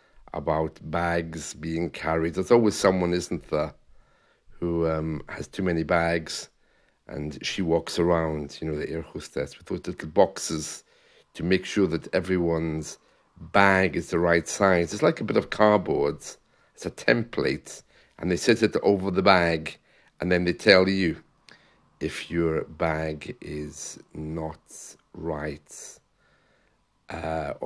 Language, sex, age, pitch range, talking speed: English, male, 50-69, 80-100 Hz, 145 wpm